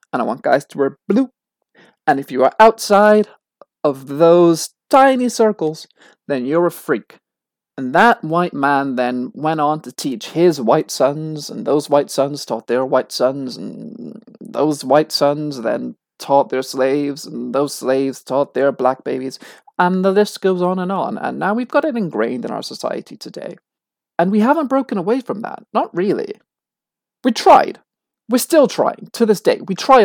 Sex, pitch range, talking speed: male, 150-230 Hz, 180 wpm